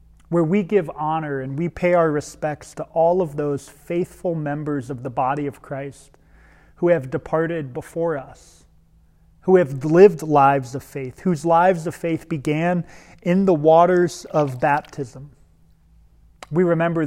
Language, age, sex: English, 30-49, male